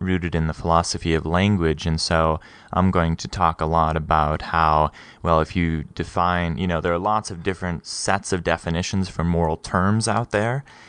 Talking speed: 195 wpm